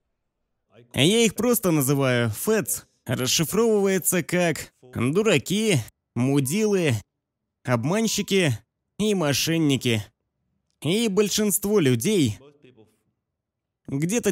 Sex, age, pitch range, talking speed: male, 20-39, 135-200 Hz, 65 wpm